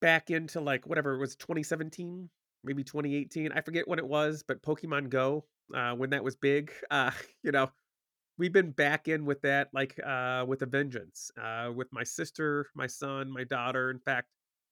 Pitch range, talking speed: 125-145 Hz, 190 wpm